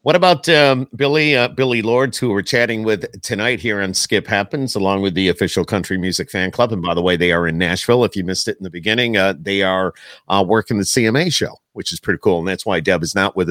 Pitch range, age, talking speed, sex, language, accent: 95-120 Hz, 50-69, 260 wpm, male, English, American